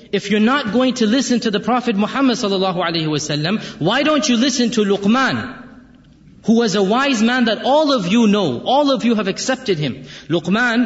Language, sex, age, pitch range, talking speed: Urdu, male, 30-49, 175-235 Hz, 200 wpm